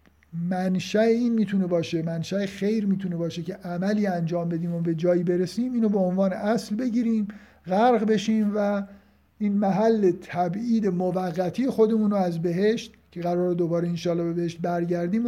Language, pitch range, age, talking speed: Persian, 175-225 Hz, 50-69, 150 wpm